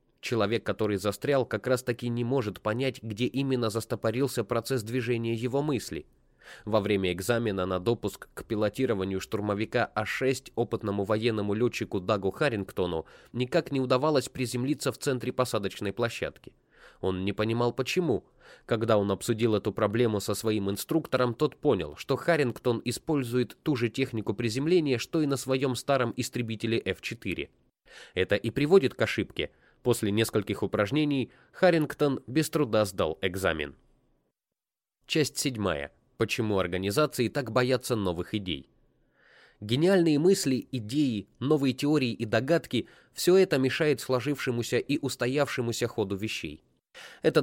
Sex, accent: male, native